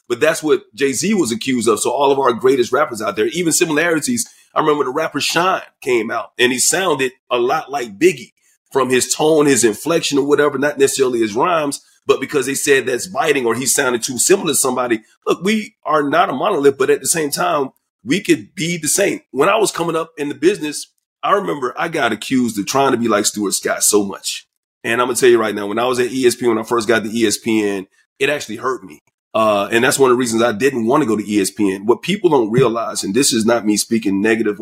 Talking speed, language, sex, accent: 245 wpm, English, male, American